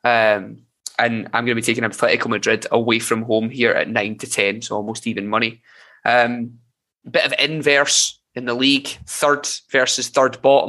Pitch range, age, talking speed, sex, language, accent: 120-135 Hz, 20-39, 180 wpm, male, English, British